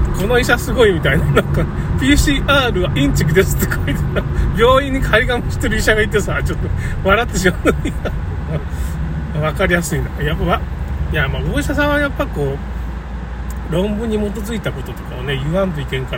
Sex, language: male, Japanese